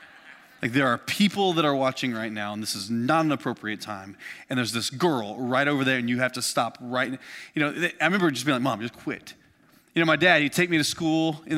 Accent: American